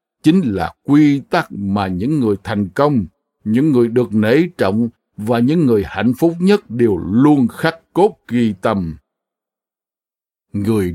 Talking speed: 150 wpm